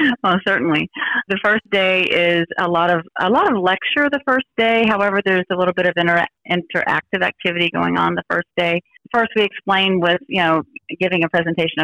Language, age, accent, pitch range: English, 40-59, American, 165-200 Hz